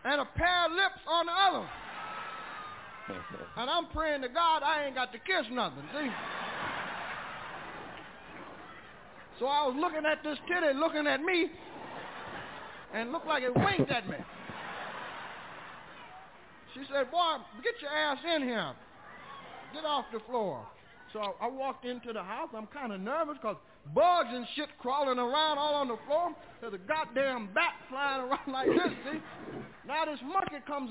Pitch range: 250-330 Hz